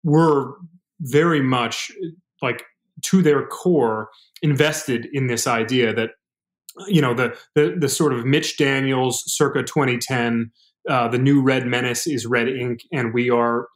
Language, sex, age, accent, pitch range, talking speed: English, male, 30-49, American, 120-150 Hz, 150 wpm